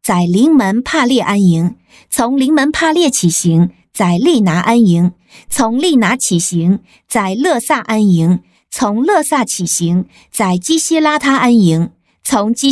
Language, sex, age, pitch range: Chinese, female, 50-69, 180-265 Hz